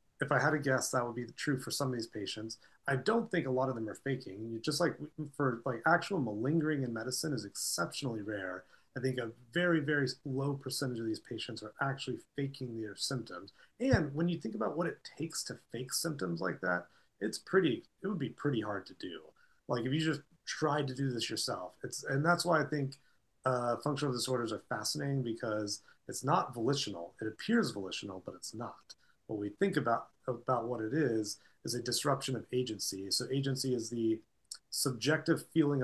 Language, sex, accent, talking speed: English, male, American, 205 wpm